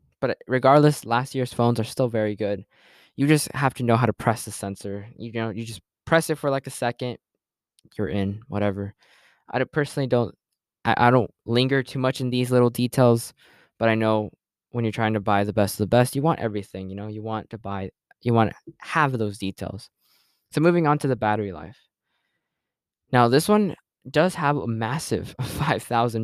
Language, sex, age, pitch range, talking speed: English, male, 10-29, 105-130 Hz, 200 wpm